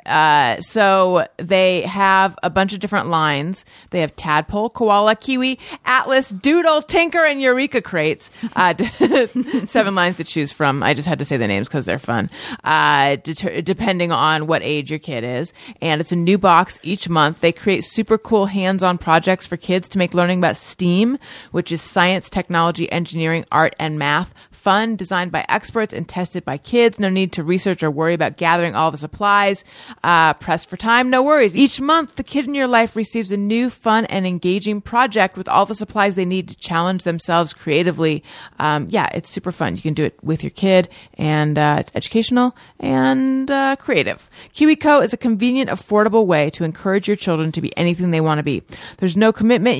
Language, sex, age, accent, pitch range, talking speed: English, female, 30-49, American, 165-220 Hz, 195 wpm